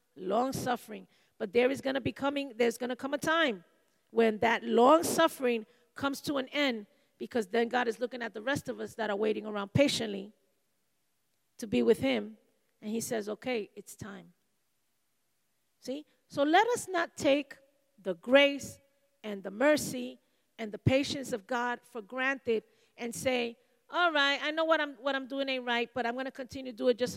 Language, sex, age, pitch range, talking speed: English, female, 40-59, 230-275 Hz, 195 wpm